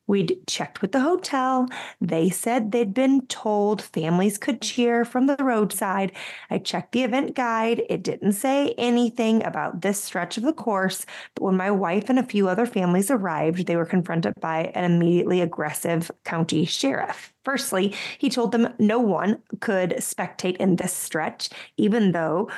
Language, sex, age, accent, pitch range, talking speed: English, female, 20-39, American, 180-220 Hz, 165 wpm